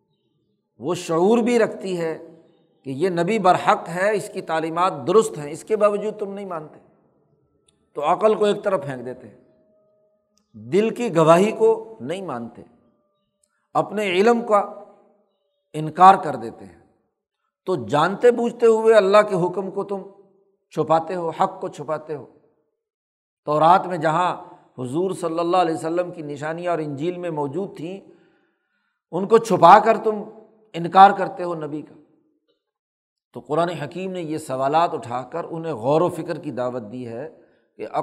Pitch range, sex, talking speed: 155-205 Hz, male, 160 wpm